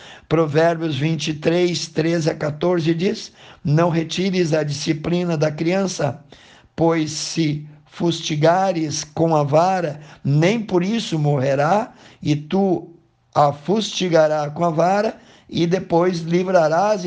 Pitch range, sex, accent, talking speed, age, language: 150-180 Hz, male, Brazilian, 115 wpm, 60-79, Portuguese